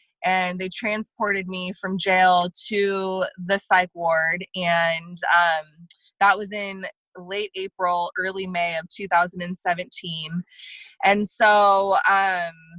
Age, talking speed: 20-39, 115 wpm